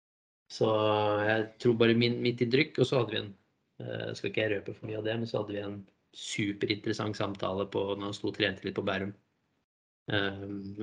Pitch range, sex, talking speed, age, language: 105-115 Hz, male, 165 wpm, 20-39, English